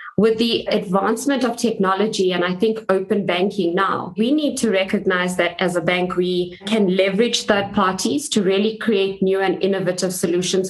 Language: English